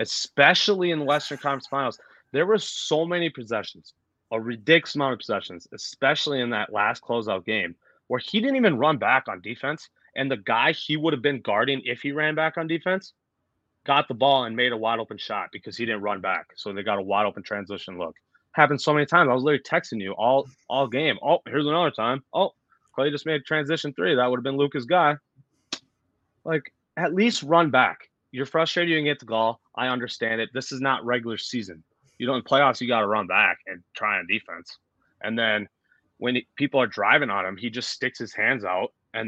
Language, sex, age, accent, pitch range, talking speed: English, male, 20-39, American, 115-150 Hz, 210 wpm